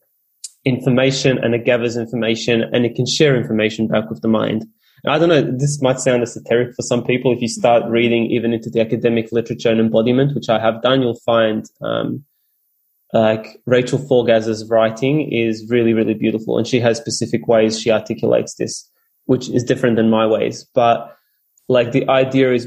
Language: English